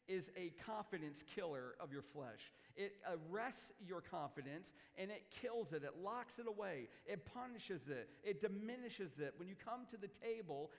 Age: 50-69